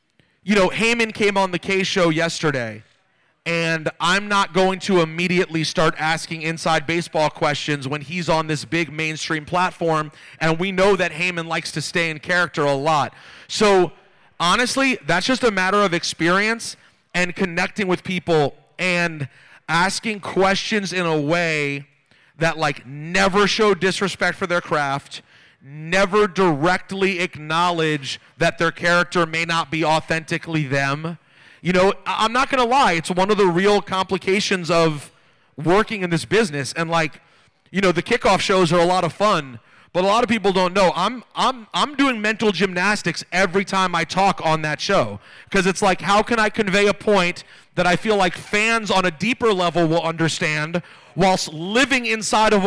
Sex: male